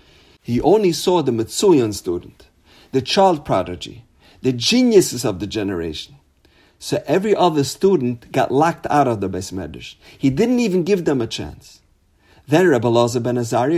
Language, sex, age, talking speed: English, male, 50-69, 150 wpm